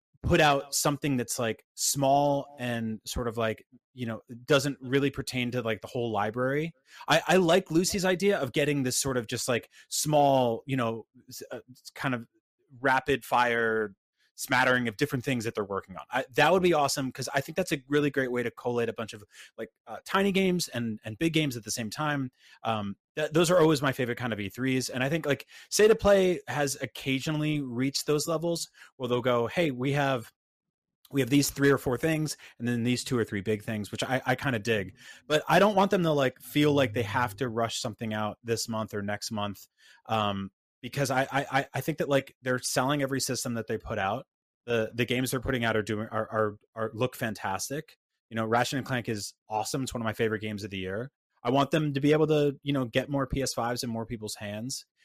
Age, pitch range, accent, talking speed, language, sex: 30-49, 115-145 Hz, American, 225 wpm, English, male